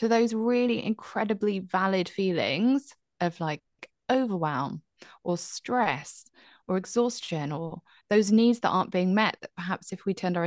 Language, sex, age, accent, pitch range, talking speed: English, female, 20-39, British, 170-240 Hz, 155 wpm